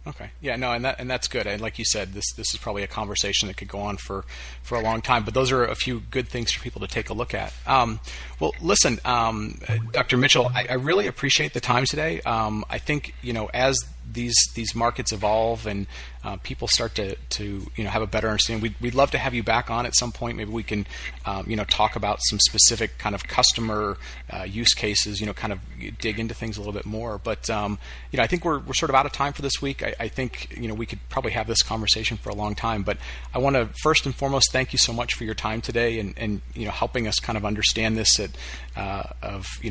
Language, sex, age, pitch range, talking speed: English, male, 30-49, 105-125 Hz, 265 wpm